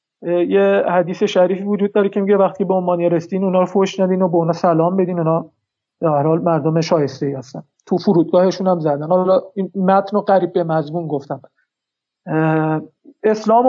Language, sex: Persian, male